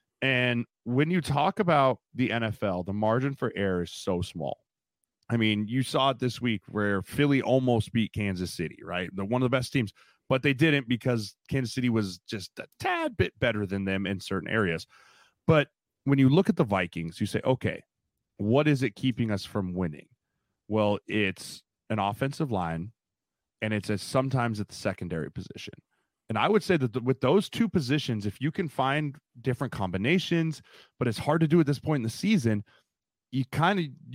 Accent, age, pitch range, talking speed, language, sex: American, 30-49, 105-140 Hz, 190 wpm, English, male